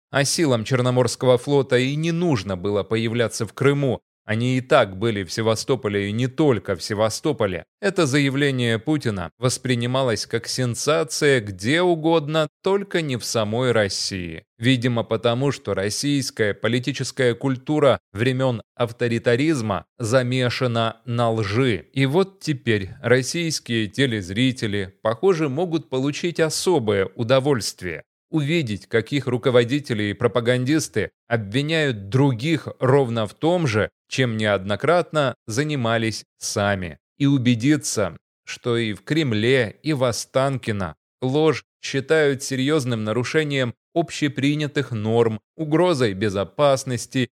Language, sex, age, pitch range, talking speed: Russian, male, 30-49, 110-140 Hz, 110 wpm